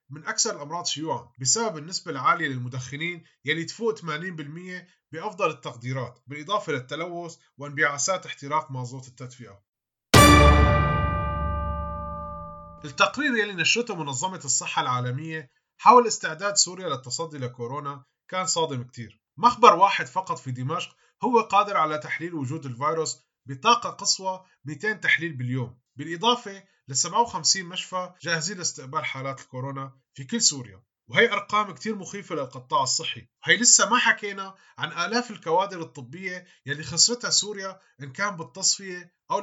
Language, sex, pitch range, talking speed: Arabic, male, 135-190 Hz, 125 wpm